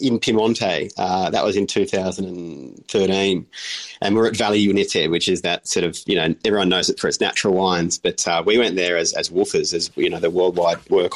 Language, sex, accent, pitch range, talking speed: English, male, Australian, 95-105 Hz, 215 wpm